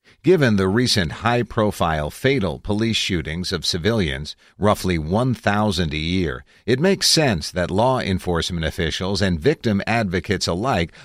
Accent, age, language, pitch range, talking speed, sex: American, 50-69, English, 85-115 Hz, 130 wpm, male